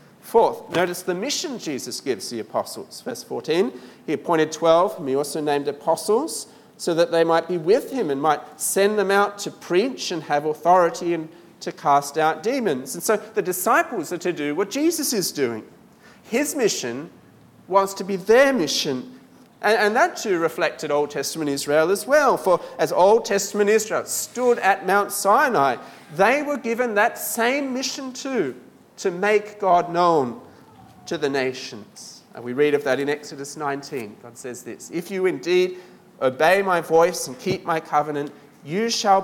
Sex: male